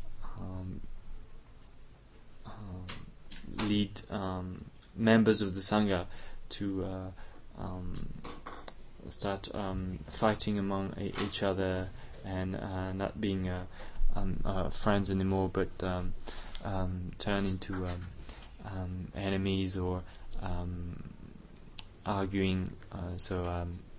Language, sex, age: English, male, 20-39